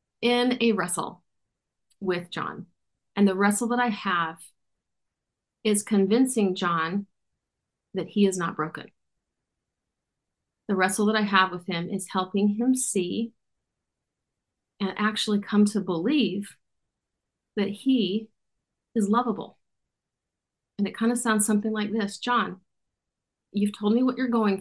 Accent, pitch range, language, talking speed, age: American, 190-220 Hz, English, 130 wpm, 40-59